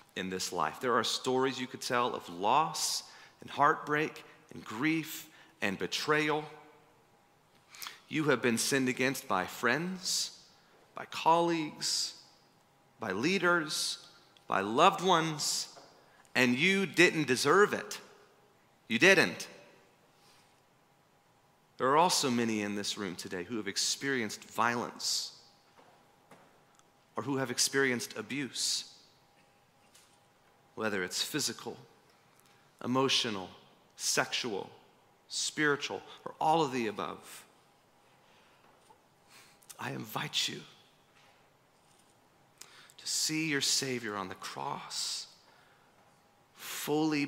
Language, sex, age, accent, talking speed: English, male, 30-49, American, 100 wpm